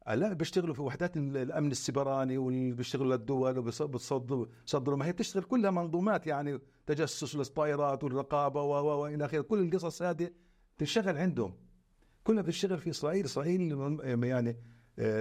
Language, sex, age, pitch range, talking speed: Arabic, male, 60-79, 125-175 Hz, 120 wpm